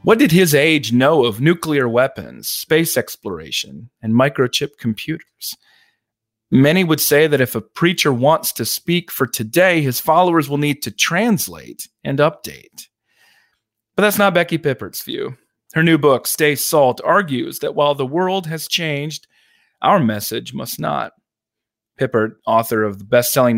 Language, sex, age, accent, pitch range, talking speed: English, male, 30-49, American, 120-165 Hz, 155 wpm